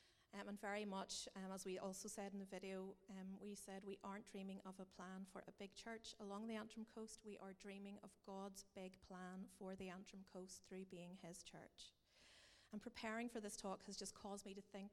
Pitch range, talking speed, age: 195-215 Hz, 215 wpm, 40-59